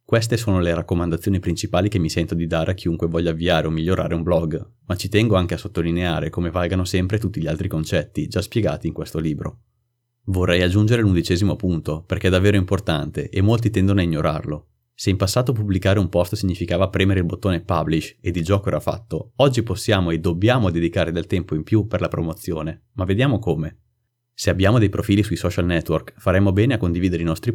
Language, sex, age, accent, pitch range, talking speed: Italian, male, 30-49, native, 85-100 Hz, 205 wpm